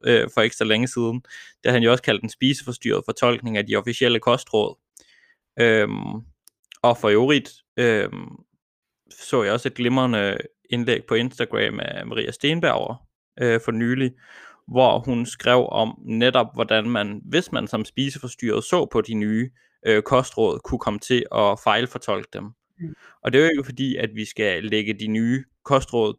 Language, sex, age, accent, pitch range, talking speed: Danish, male, 20-39, native, 110-130 Hz, 165 wpm